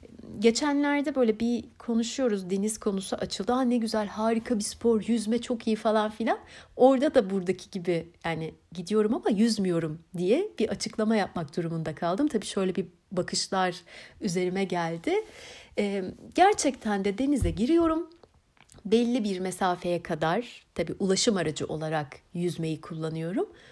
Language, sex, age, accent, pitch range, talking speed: Turkish, female, 60-79, native, 175-240 Hz, 130 wpm